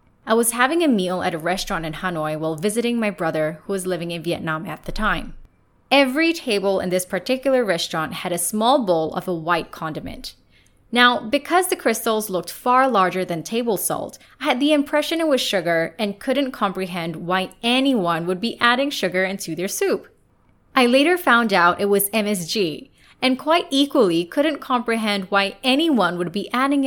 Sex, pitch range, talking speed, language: female, 180-265 Hz, 185 wpm, English